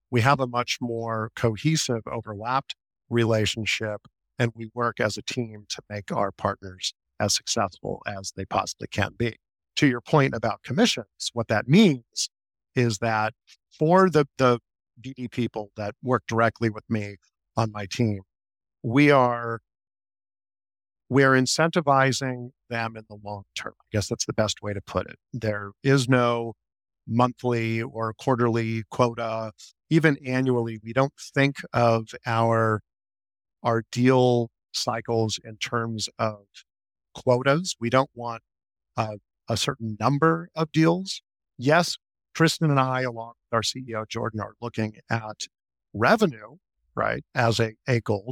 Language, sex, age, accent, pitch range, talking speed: English, male, 50-69, American, 105-130 Hz, 145 wpm